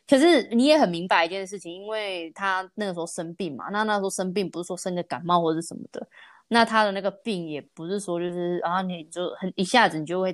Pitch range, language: 170-220 Hz, Chinese